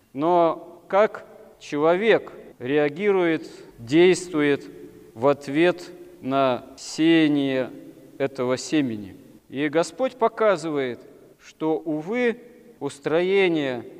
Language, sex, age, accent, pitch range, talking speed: Russian, male, 40-59, native, 140-170 Hz, 75 wpm